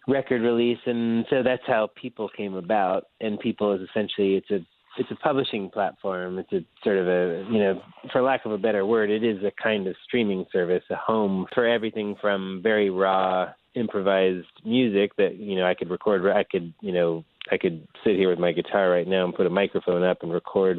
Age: 30-49